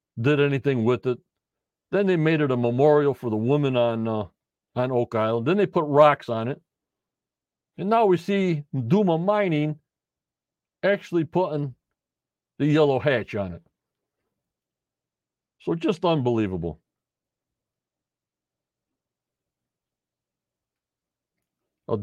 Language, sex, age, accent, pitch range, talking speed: English, male, 50-69, American, 110-150 Hz, 110 wpm